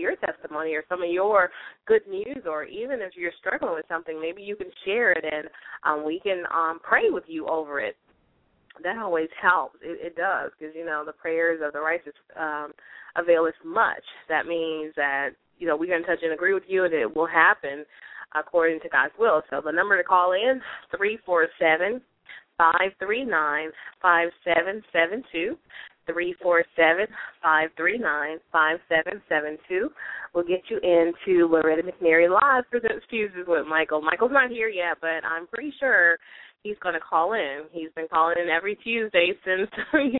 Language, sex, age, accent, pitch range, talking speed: English, female, 20-39, American, 160-215 Hz, 175 wpm